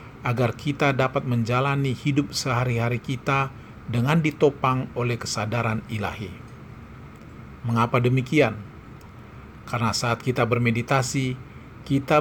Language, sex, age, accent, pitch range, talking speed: Indonesian, male, 40-59, native, 115-135 Hz, 95 wpm